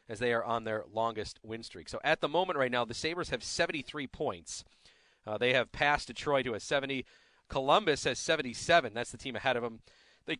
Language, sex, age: English, male, 40-59